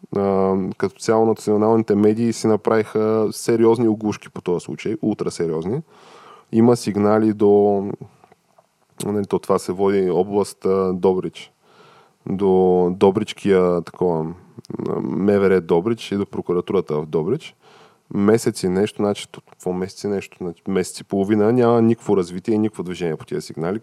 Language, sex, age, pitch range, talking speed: Bulgarian, male, 20-39, 95-110 Hz, 130 wpm